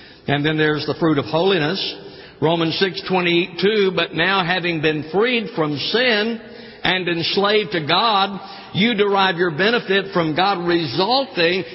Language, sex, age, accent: English, male, 60-79, American